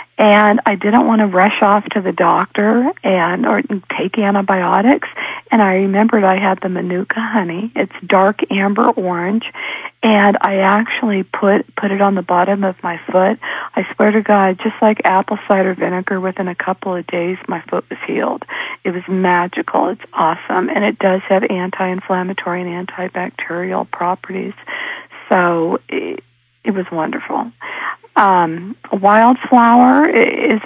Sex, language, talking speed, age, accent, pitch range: female, English, 150 wpm, 50-69, American, 185-225 Hz